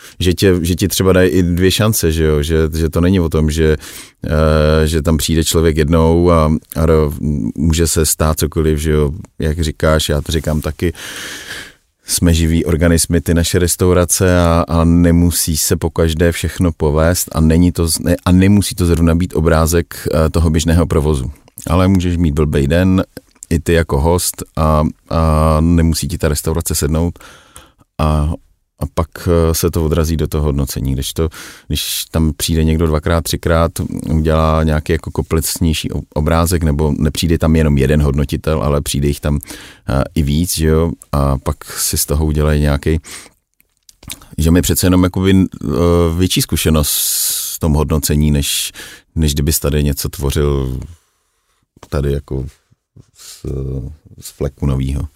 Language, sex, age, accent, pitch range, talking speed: Czech, male, 30-49, native, 75-85 Hz, 155 wpm